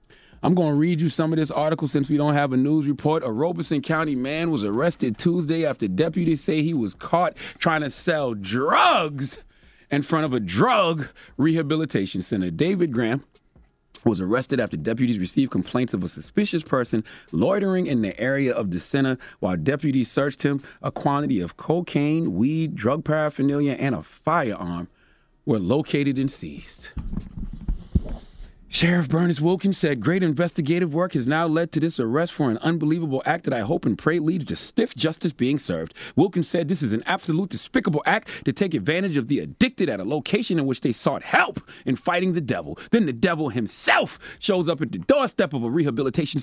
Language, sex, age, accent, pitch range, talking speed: English, male, 30-49, American, 130-165 Hz, 185 wpm